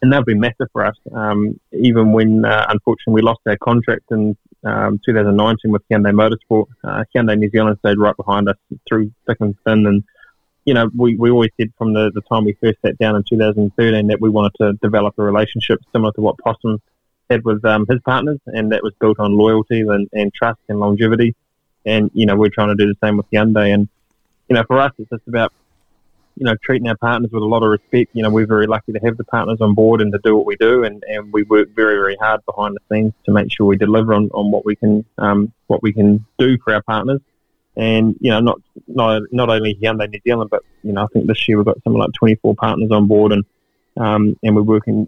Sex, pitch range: male, 105-115 Hz